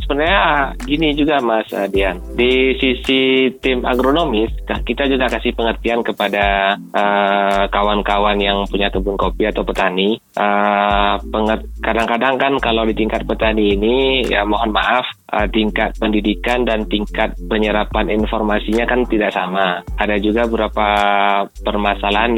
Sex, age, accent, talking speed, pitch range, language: male, 20-39, native, 135 wpm, 100-115 Hz, Indonesian